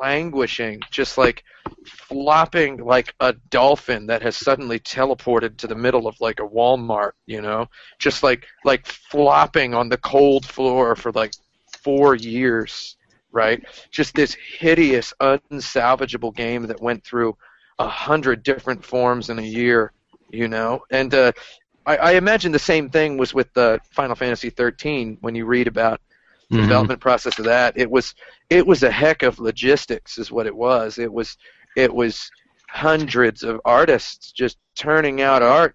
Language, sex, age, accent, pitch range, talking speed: English, male, 40-59, American, 115-140 Hz, 160 wpm